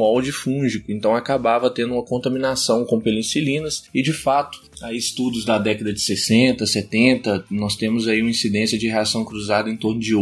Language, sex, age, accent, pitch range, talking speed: Portuguese, male, 20-39, Brazilian, 110-140 Hz, 175 wpm